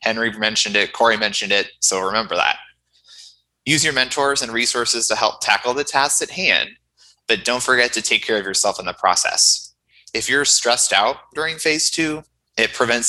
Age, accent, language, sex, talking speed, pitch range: 20-39, American, English, male, 190 wpm, 100-130 Hz